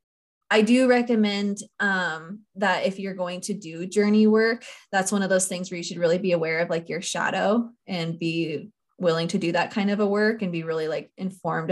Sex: female